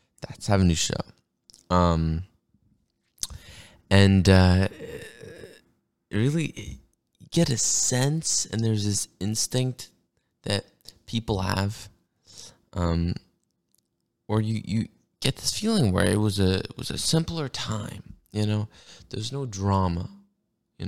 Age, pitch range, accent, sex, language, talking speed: 20-39, 90-115 Hz, American, male, English, 120 wpm